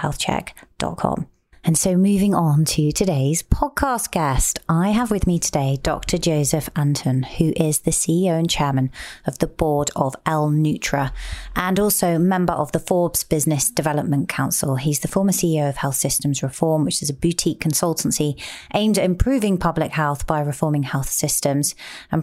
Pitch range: 150-180 Hz